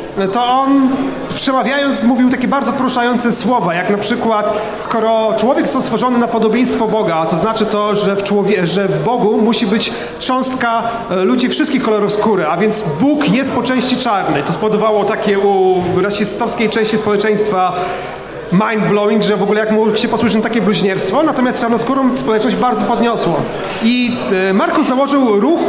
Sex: male